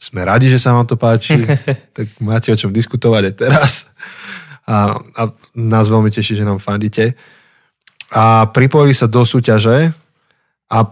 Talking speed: 150 wpm